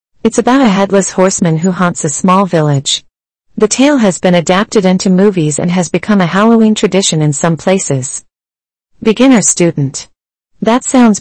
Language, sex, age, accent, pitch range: Chinese, female, 40-59, American, 165-215 Hz